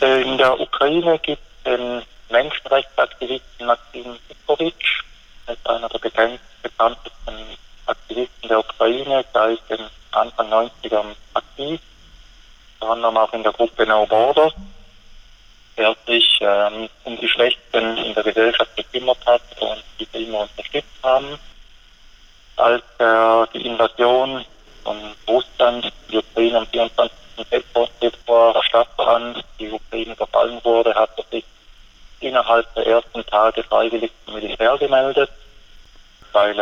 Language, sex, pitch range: German, male, 110-120 Hz